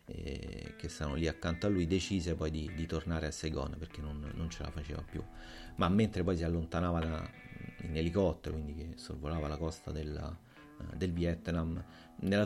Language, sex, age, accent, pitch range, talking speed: Italian, male, 30-49, native, 80-95 Hz, 185 wpm